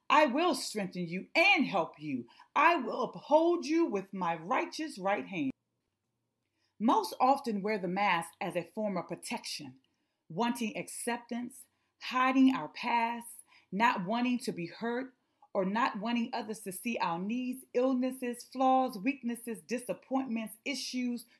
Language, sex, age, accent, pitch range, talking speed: English, female, 30-49, American, 195-265 Hz, 135 wpm